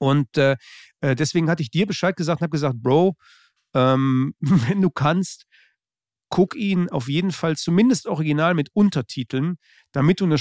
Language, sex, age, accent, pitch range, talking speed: German, male, 40-59, German, 135-170 Hz, 160 wpm